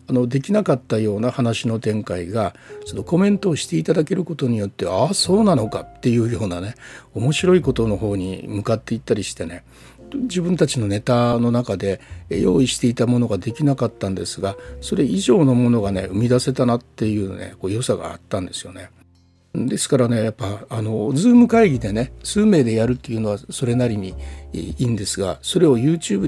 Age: 60-79